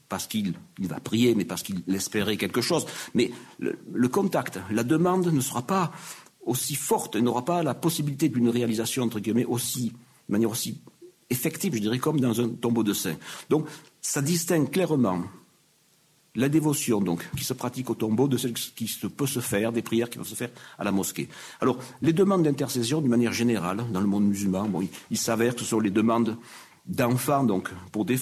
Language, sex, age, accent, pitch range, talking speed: French, male, 50-69, French, 105-150 Hz, 205 wpm